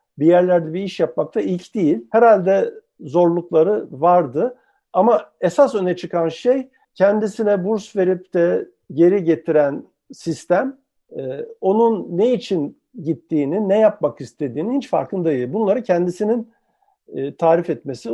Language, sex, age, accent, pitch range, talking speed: Turkish, male, 50-69, native, 155-220 Hz, 120 wpm